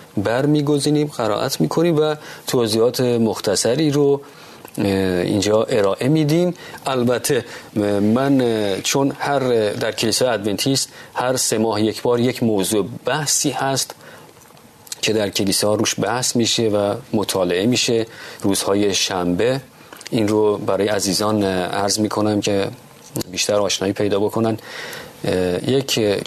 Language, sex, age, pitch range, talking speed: Persian, male, 40-59, 105-125 Hz, 115 wpm